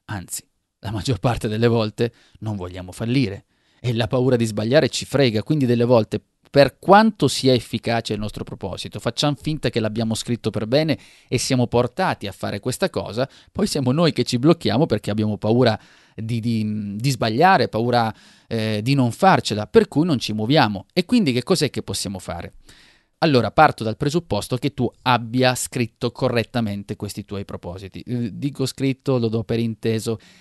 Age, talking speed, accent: 30-49, 170 wpm, native